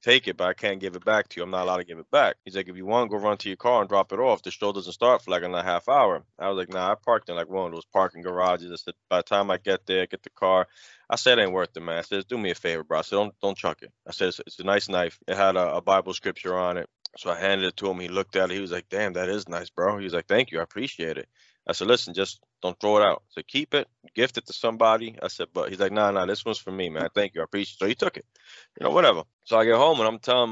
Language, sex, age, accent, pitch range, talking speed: English, male, 20-39, American, 95-120 Hz, 335 wpm